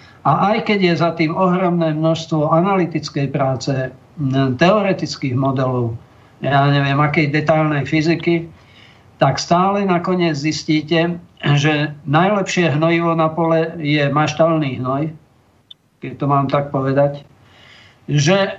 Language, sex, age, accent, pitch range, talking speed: Czech, male, 50-69, native, 145-170 Hz, 115 wpm